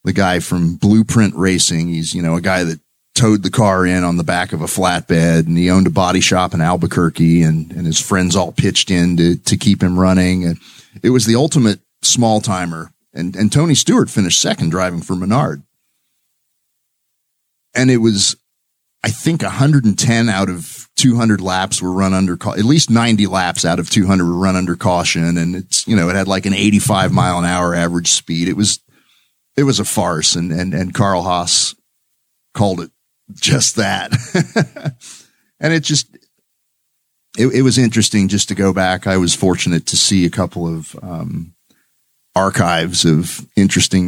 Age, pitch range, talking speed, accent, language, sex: 40-59, 85-105 Hz, 185 wpm, American, English, male